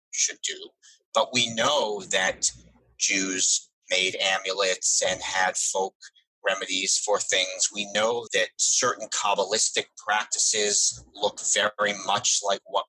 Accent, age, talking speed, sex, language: American, 30-49, 120 wpm, male, English